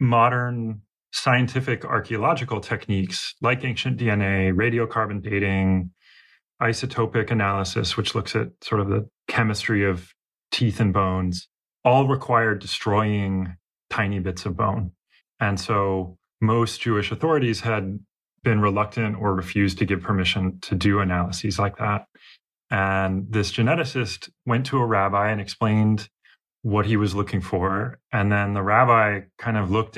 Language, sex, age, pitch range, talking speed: English, male, 30-49, 100-120 Hz, 135 wpm